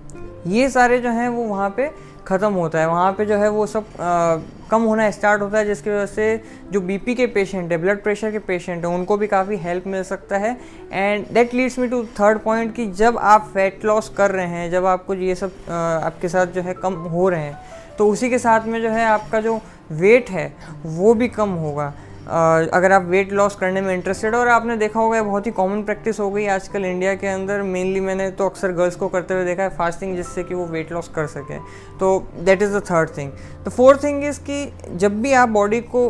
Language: Hindi